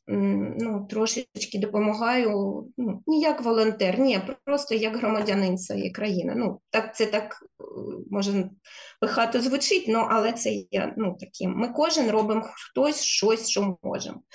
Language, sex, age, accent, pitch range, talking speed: Ukrainian, female, 20-39, native, 210-260 Hz, 130 wpm